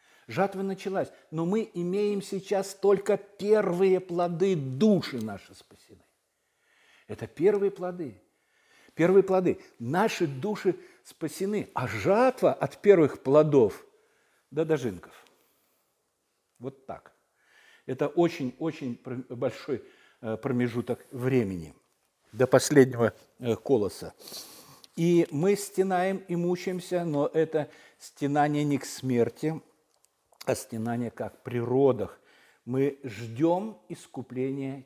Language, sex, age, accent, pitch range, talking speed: Russian, male, 50-69, native, 125-185 Hz, 95 wpm